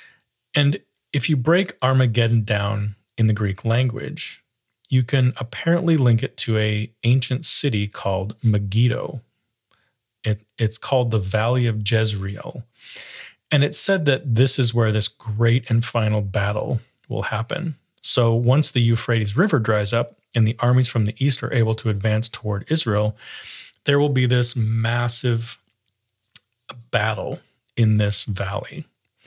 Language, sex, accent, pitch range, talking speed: English, male, American, 110-130 Hz, 140 wpm